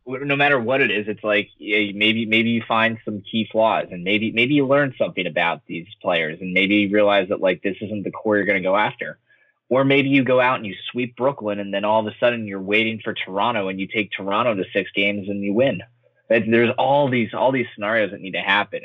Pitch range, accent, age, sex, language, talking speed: 95-120 Hz, American, 20-39, male, English, 250 wpm